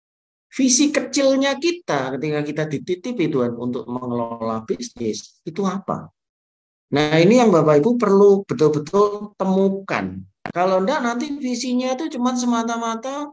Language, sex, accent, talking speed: Indonesian, male, native, 115 wpm